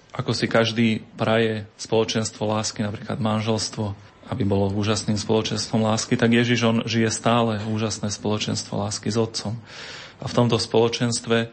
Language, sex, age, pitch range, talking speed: Slovak, male, 30-49, 110-120 Hz, 140 wpm